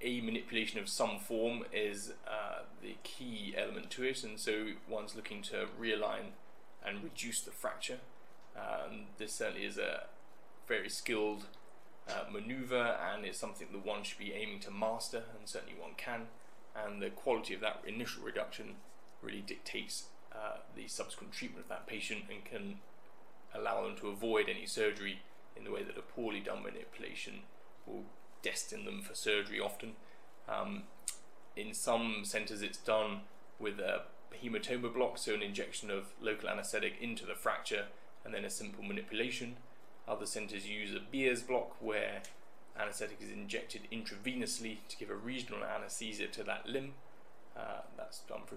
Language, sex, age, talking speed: English, male, 20-39, 160 wpm